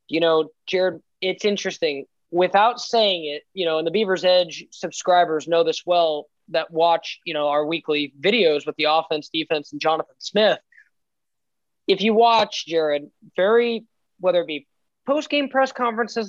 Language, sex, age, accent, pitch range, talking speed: English, male, 20-39, American, 165-215 Hz, 160 wpm